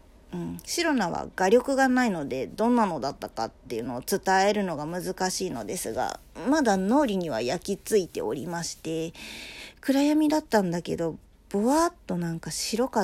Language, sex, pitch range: Japanese, female, 175-245 Hz